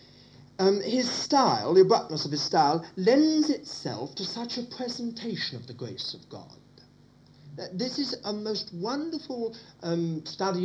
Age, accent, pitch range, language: 50-69, British, 155-245 Hz, English